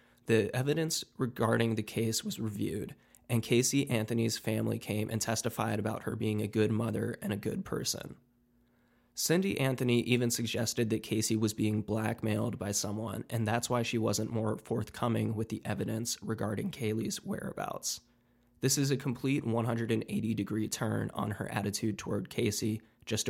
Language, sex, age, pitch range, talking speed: English, male, 20-39, 110-120 Hz, 155 wpm